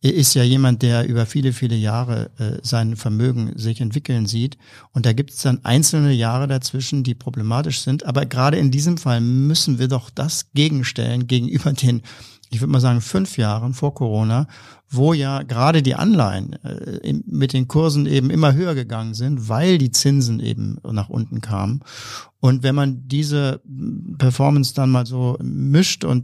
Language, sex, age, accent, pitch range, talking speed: German, male, 50-69, German, 120-145 Hz, 170 wpm